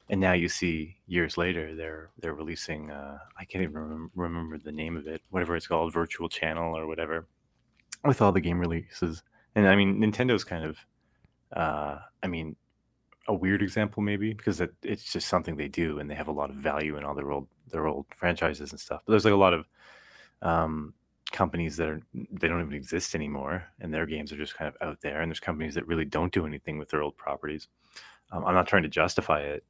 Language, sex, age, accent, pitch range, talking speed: English, male, 30-49, American, 80-95 Hz, 220 wpm